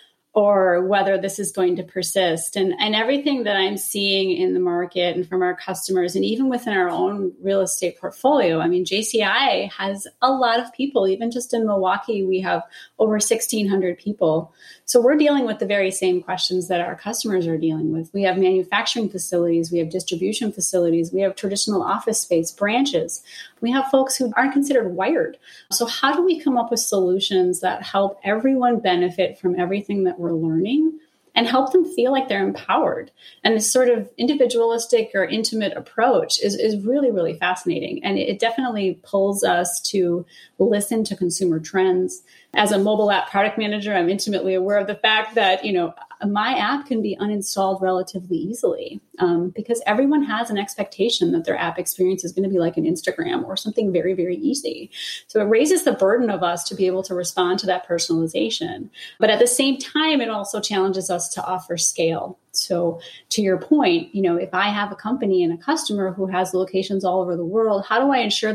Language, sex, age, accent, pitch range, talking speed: English, female, 30-49, American, 185-230 Hz, 195 wpm